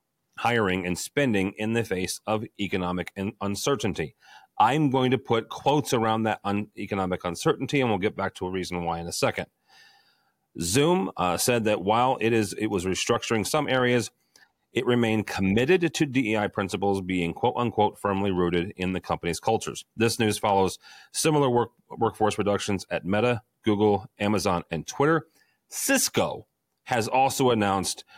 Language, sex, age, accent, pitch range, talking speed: English, male, 40-59, American, 95-120 Hz, 155 wpm